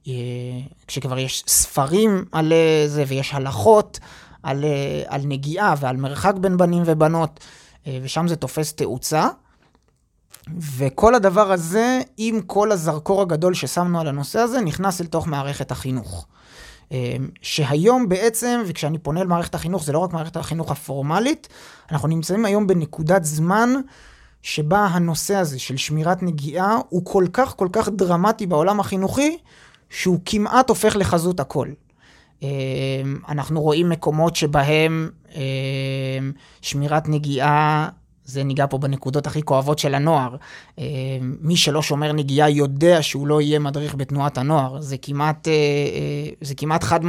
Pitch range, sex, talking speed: 140-175 Hz, male, 125 wpm